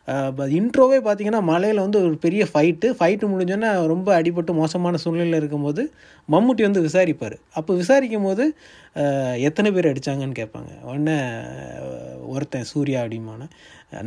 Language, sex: Tamil, male